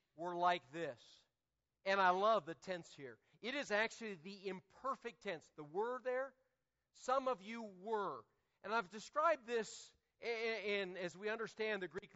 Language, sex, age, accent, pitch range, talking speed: English, male, 50-69, American, 160-245 Hz, 165 wpm